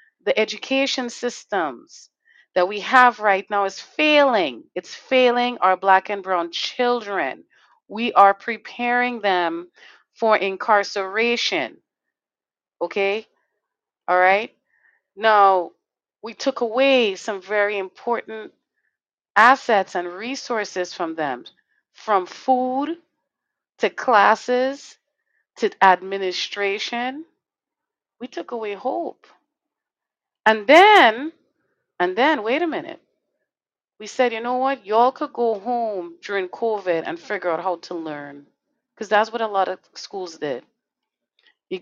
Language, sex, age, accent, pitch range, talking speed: English, female, 30-49, American, 195-255 Hz, 115 wpm